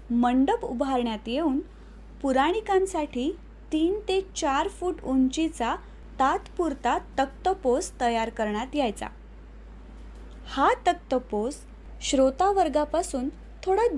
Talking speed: 75 wpm